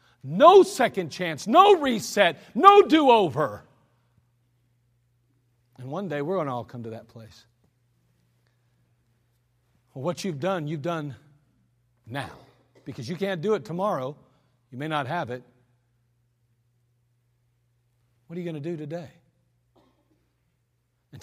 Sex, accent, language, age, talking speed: male, American, English, 40-59, 125 wpm